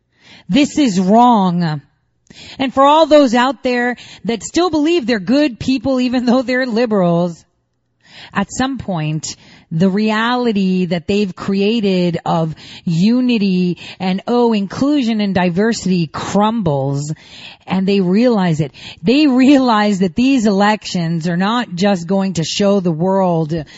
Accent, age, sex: American, 30-49, female